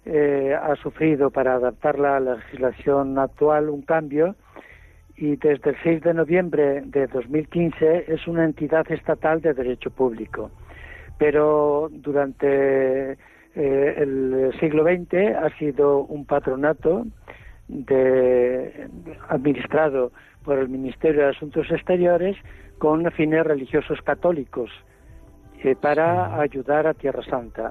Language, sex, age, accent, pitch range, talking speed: Spanish, male, 60-79, Spanish, 140-160 Hz, 115 wpm